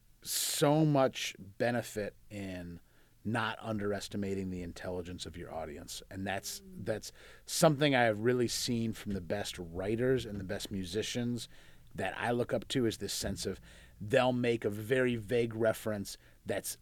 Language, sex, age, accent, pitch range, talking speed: English, male, 30-49, American, 100-120 Hz, 155 wpm